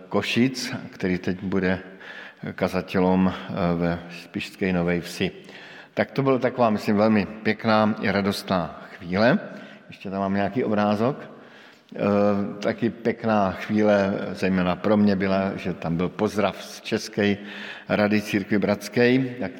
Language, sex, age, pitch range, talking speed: Slovak, male, 50-69, 95-120 Hz, 130 wpm